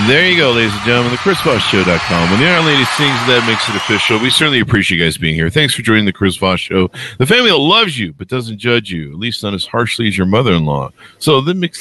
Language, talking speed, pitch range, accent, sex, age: English, 260 wpm, 85-120 Hz, American, male, 50-69